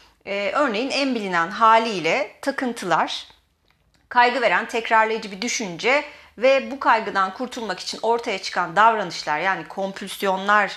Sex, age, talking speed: female, 30-49, 110 wpm